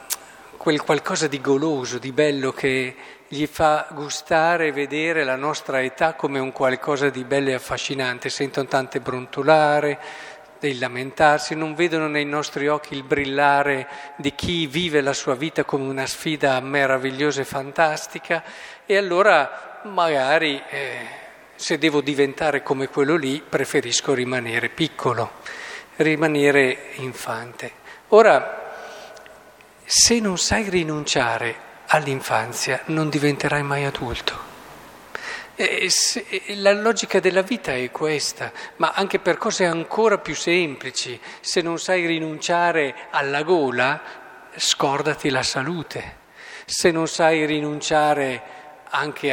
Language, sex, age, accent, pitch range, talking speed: Italian, male, 50-69, native, 135-160 Hz, 120 wpm